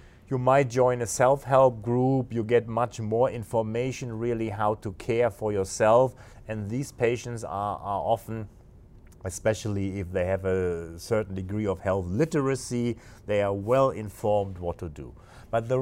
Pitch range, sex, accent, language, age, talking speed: 100-130 Hz, male, German, English, 30-49, 160 wpm